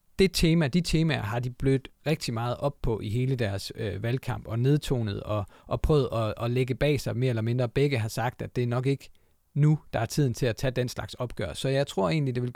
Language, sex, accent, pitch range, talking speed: Danish, male, native, 115-140 Hz, 250 wpm